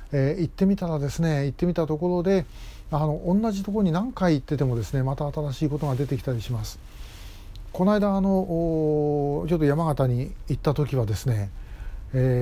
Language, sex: Japanese, male